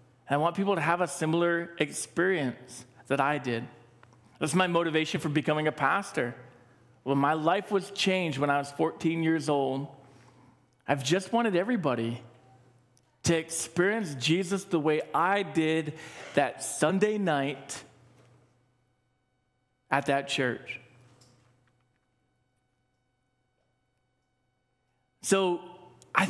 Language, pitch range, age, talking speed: English, 125-175 Hz, 40-59, 110 wpm